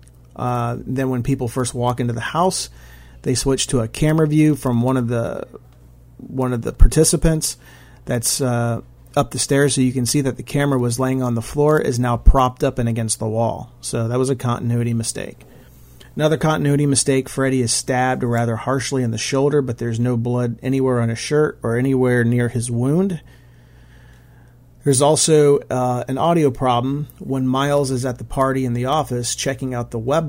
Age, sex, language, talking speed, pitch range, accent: 40-59, male, English, 190 wpm, 115-135 Hz, American